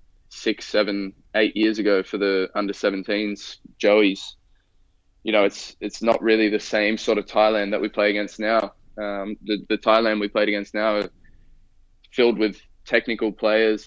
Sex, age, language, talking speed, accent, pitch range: male, 20-39, English, 170 wpm, Australian, 95-110 Hz